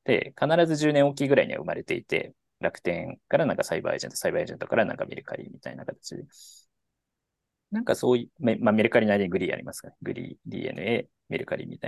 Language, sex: Japanese, male